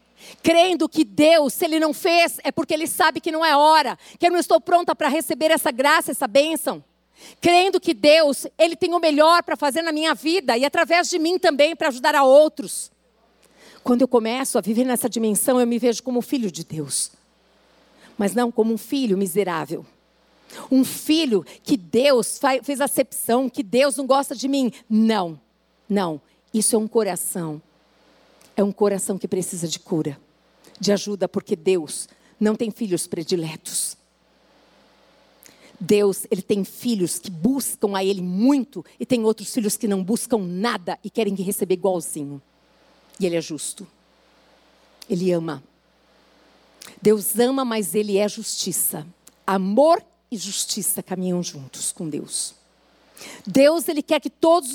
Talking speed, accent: 160 wpm, Brazilian